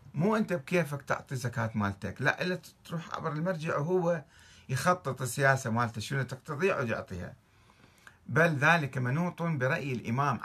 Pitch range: 105-145 Hz